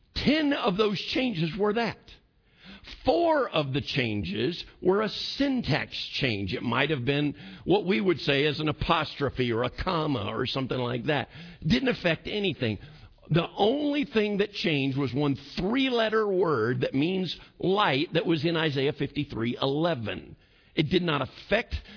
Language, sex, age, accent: English, male, 50-69, American